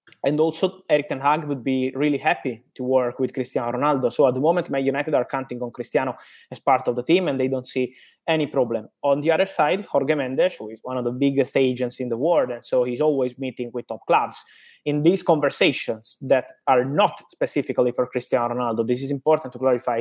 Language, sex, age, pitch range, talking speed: English, male, 20-39, 125-155 Hz, 220 wpm